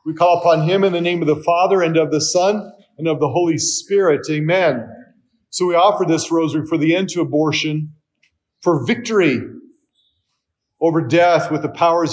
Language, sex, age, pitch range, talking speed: English, male, 40-59, 160-200 Hz, 185 wpm